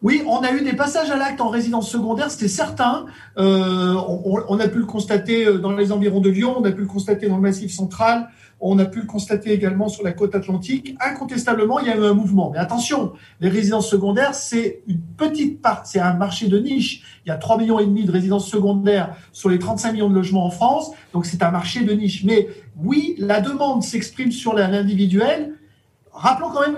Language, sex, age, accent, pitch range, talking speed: French, male, 50-69, French, 195-260 Hz, 220 wpm